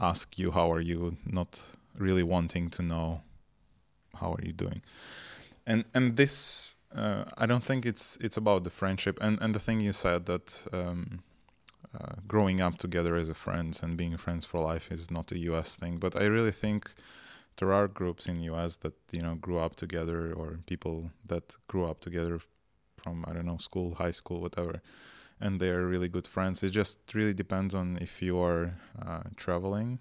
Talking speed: 190 wpm